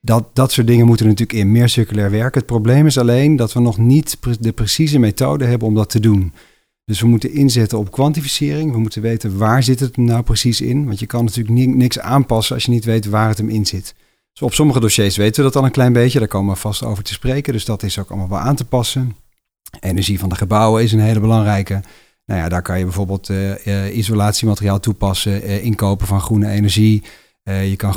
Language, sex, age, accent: Dutch, male, 40-59, Dutch